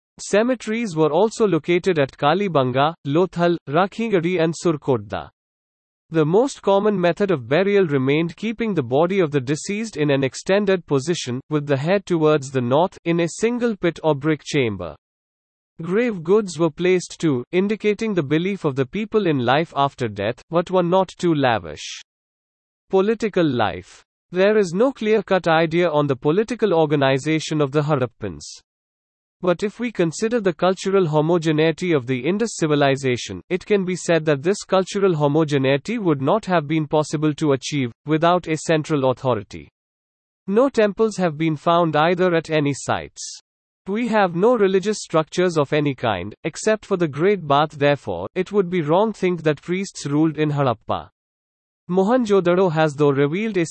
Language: English